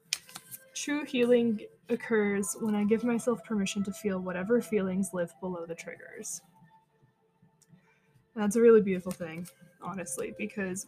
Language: English